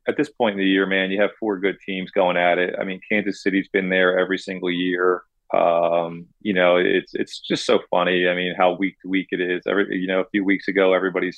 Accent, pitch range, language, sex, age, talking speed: American, 90-100 Hz, English, male, 30-49, 260 wpm